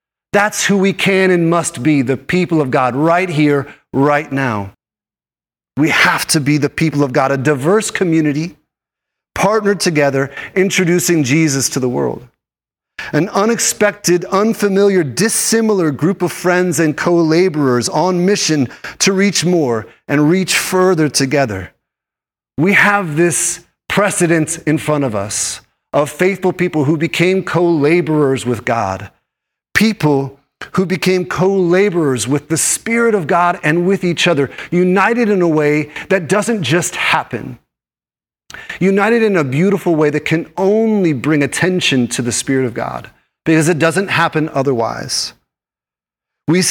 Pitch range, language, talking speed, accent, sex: 145-185 Hz, English, 140 wpm, American, male